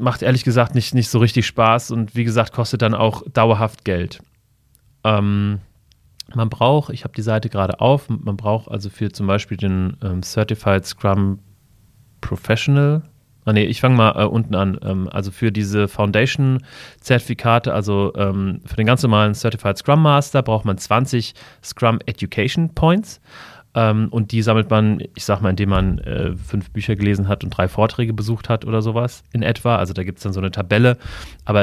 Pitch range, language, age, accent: 100-120 Hz, German, 30-49, German